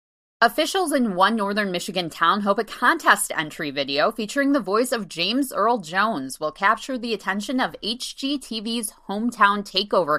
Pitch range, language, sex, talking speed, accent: 170-255 Hz, English, female, 155 wpm, American